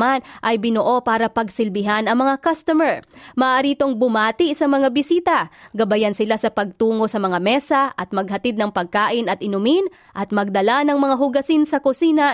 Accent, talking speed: native, 160 wpm